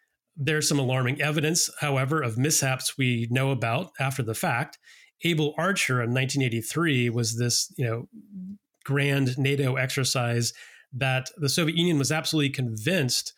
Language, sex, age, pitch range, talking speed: English, male, 30-49, 120-150 Hz, 140 wpm